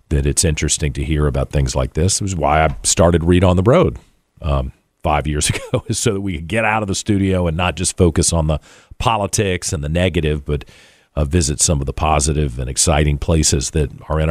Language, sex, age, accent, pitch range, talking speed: English, male, 40-59, American, 75-90 Hz, 225 wpm